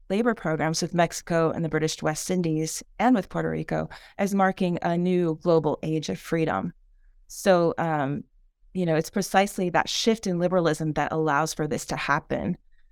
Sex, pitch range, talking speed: female, 160-195 Hz, 170 wpm